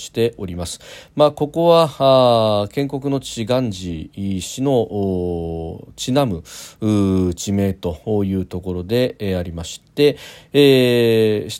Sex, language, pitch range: male, Japanese, 95-125 Hz